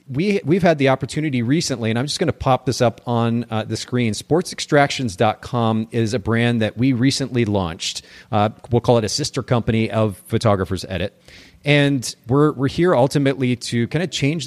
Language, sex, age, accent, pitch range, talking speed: English, male, 40-59, American, 110-135 Hz, 185 wpm